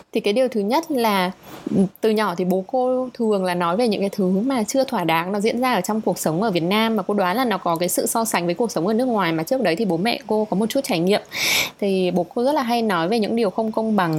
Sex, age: female, 20-39